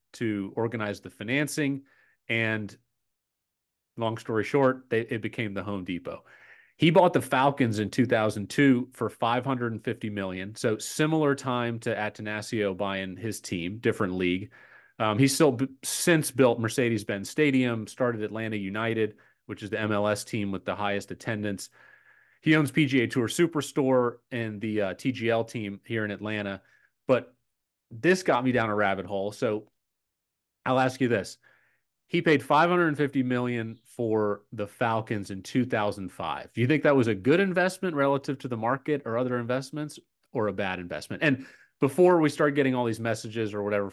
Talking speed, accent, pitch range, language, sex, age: 160 wpm, American, 105-135 Hz, English, male, 30-49